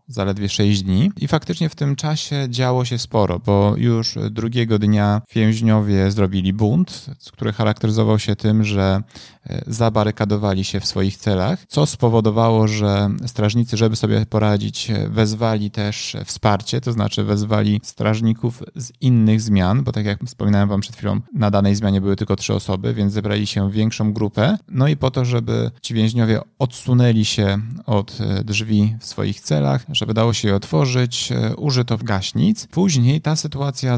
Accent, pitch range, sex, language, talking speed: native, 105-120 Hz, male, Polish, 160 wpm